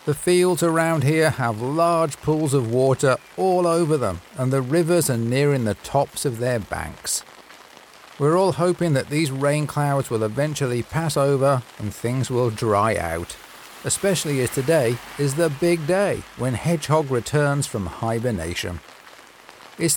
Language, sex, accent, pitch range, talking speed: English, male, British, 120-170 Hz, 155 wpm